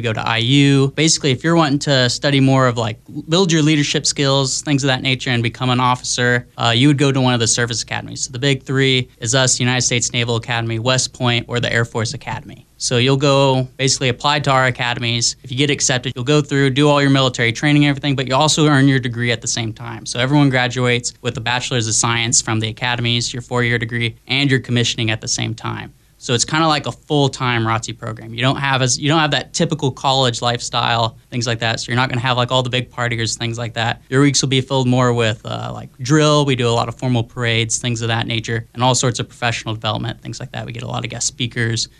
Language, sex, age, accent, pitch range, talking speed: English, male, 20-39, American, 115-135 Hz, 255 wpm